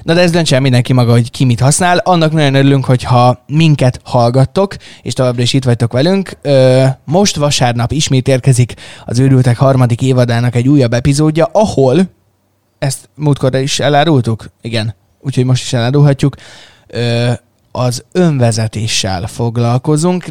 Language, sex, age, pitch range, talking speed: Hungarian, male, 20-39, 120-145 Hz, 140 wpm